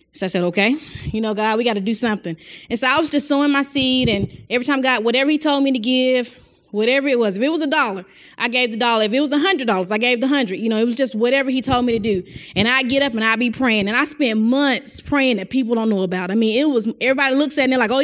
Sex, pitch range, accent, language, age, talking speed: female, 225-280 Hz, American, English, 20-39, 305 wpm